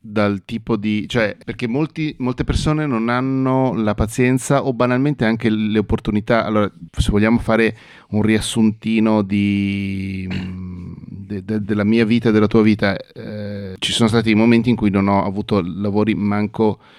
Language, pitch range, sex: Italian, 100-110 Hz, male